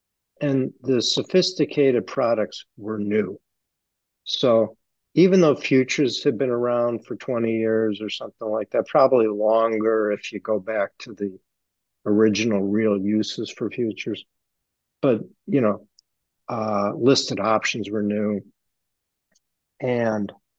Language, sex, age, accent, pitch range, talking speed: English, male, 60-79, American, 105-125 Hz, 120 wpm